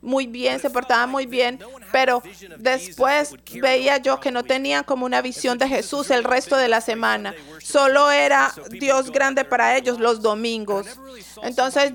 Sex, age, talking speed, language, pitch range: female, 40-59, 160 wpm, English, 230-275 Hz